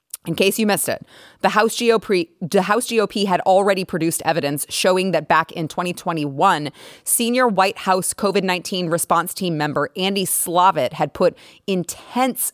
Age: 30-49